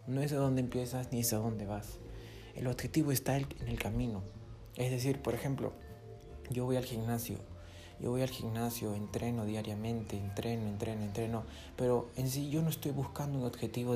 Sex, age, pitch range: male, 20-39, 110-125 Hz